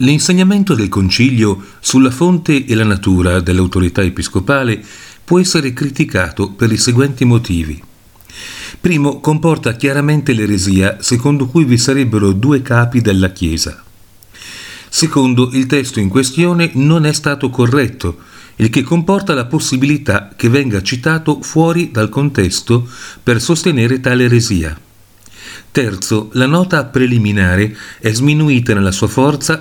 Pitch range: 100-145 Hz